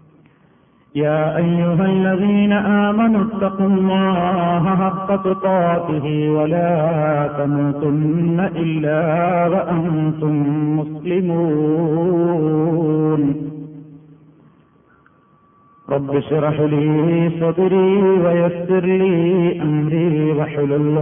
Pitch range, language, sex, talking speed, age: 150-175 Hz, Malayalam, male, 60 wpm, 50-69